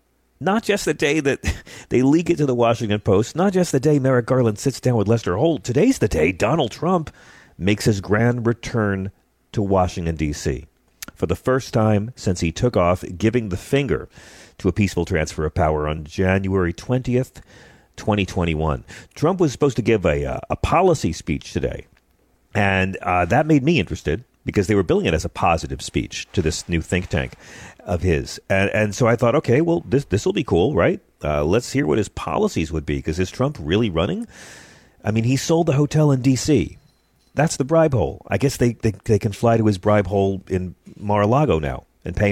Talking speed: 200 wpm